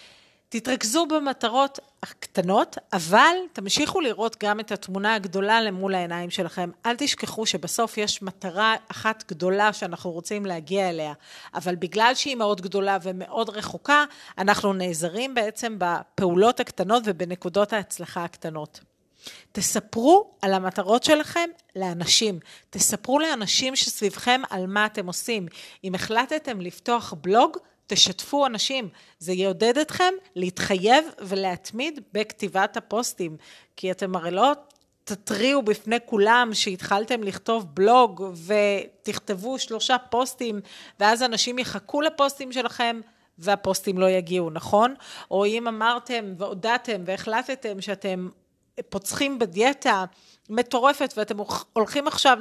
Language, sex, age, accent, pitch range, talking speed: Hebrew, female, 40-59, native, 190-250 Hz, 110 wpm